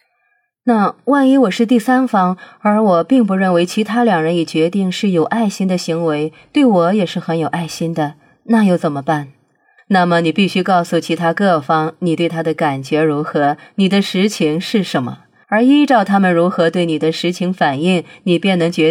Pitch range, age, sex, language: 160-210 Hz, 30-49, female, Chinese